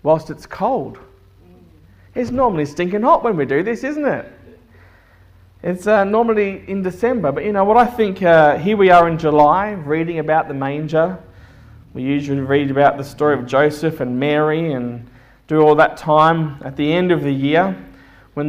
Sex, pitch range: male, 135-180 Hz